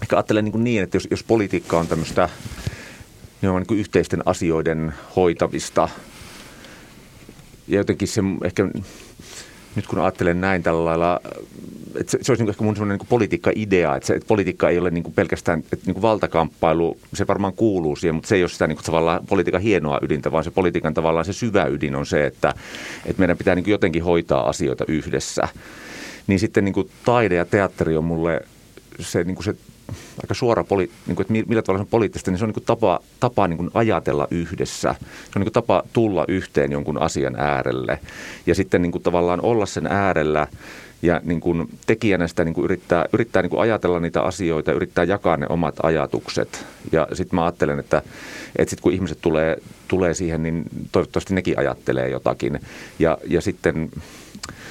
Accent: native